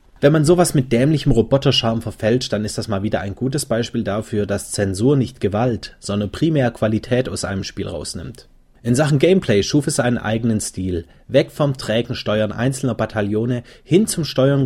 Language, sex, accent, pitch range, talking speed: German, male, German, 100-130 Hz, 180 wpm